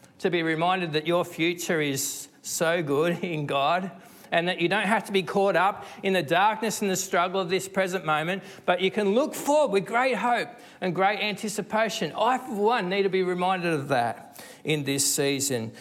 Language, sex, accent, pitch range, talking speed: English, male, Australian, 160-210 Hz, 200 wpm